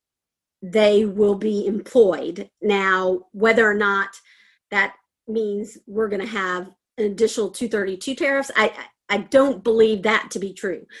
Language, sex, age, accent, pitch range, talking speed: English, female, 40-59, American, 200-230 Hz, 140 wpm